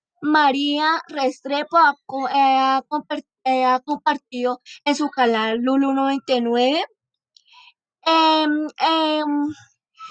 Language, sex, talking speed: Spanish, female, 65 wpm